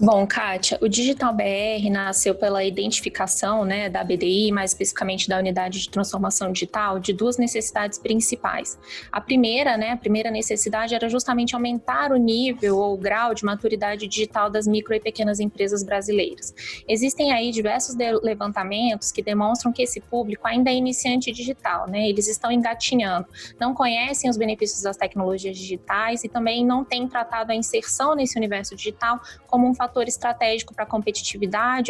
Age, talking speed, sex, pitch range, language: 20-39, 160 wpm, female, 205-240 Hz, Portuguese